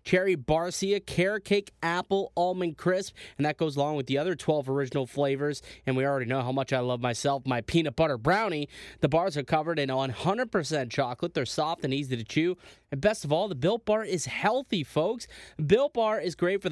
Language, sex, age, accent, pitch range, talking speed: English, male, 20-39, American, 140-190 Hz, 210 wpm